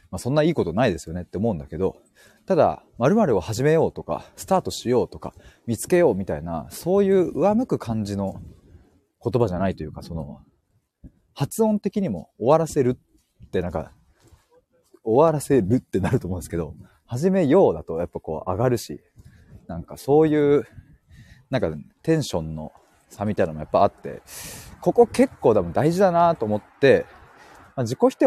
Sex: male